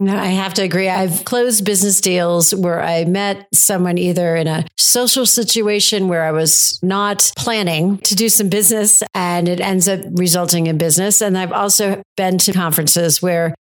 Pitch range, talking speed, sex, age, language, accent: 175-205 Hz, 180 wpm, female, 50-69, English, American